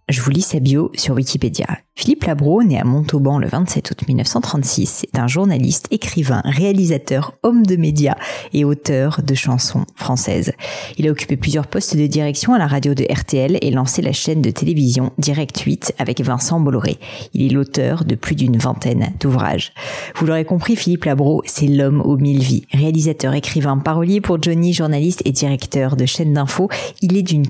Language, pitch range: French, 135-165 Hz